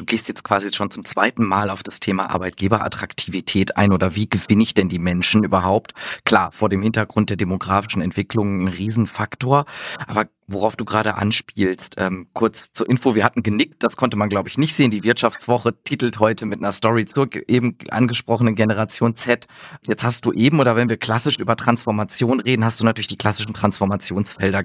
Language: German